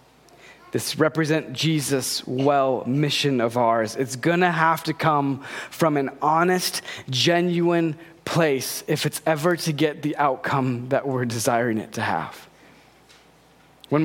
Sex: male